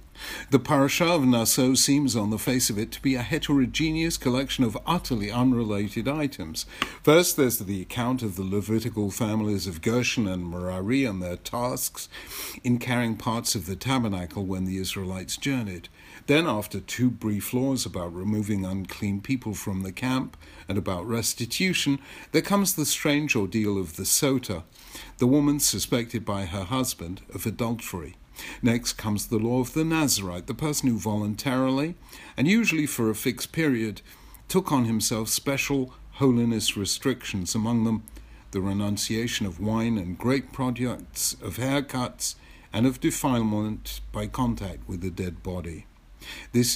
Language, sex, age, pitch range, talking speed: English, male, 60-79, 100-130 Hz, 155 wpm